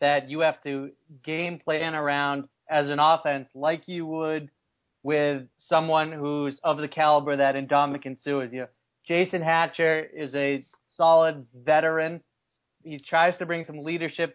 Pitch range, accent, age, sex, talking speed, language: 140-160 Hz, American, 30-49, male, 145 wpm, English